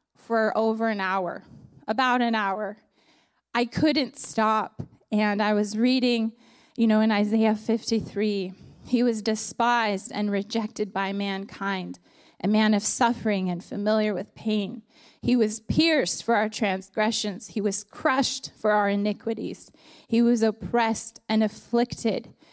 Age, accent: 20-39, American